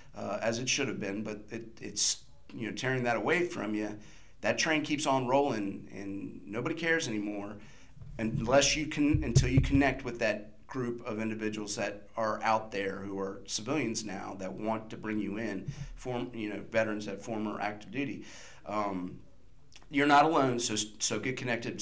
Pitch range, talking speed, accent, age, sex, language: 95-115 Hz, 180 wpm, American, 40-59, male, English